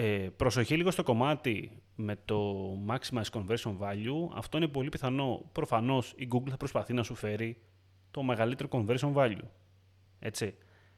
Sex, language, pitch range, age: male, Greek, 95-135 Hz, 30-49